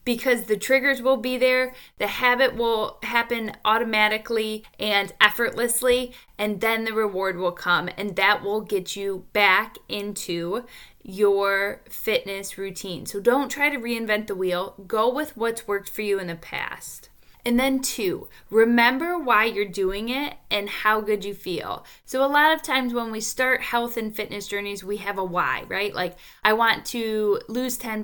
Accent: American